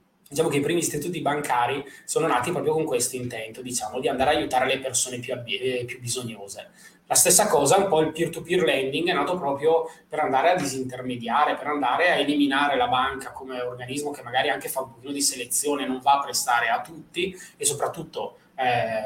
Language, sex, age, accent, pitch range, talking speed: Italian, male, 20-39, native, 125-160 Hz, 200 wpm